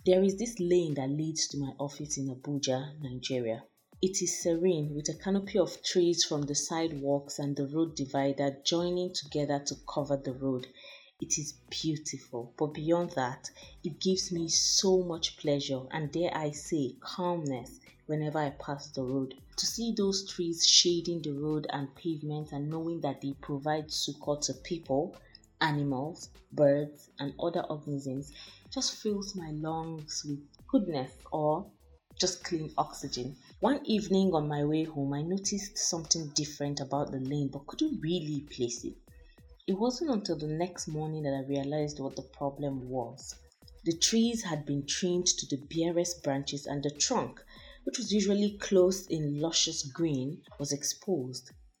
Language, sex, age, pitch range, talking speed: English, female, 30-49, 140-175 Hz, 160 wpm